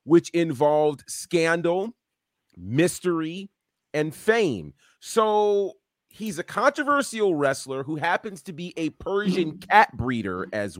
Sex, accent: male, American